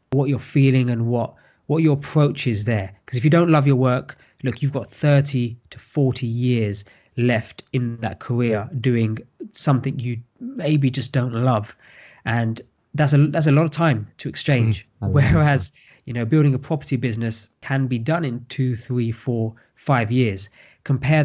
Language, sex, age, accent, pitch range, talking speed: English, male, 20-39, British, 120-145 Hz, 175 wpm